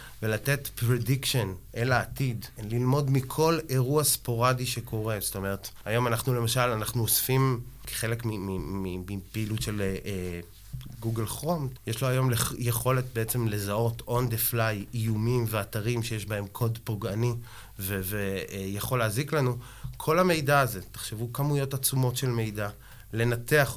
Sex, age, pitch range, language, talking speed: male, 20-39, 105-125 Hz, Hebrew, 130 wpm